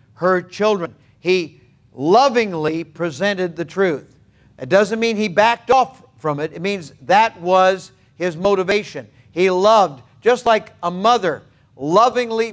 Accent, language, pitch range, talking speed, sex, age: American, English, 160-210 Hz, 135 wpm, male, 50-69